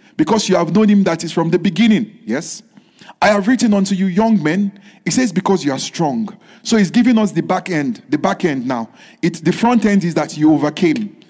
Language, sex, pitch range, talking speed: English, male, 165-215 Hz, 225 wpm